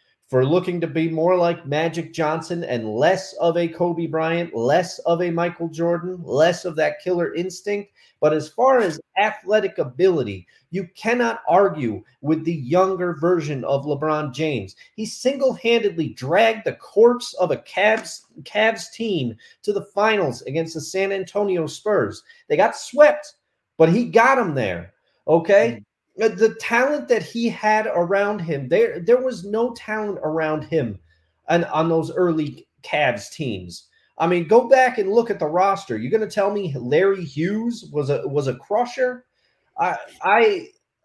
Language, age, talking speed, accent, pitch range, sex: English, 30-49, 160 wpm, American, 160-225 Hz, male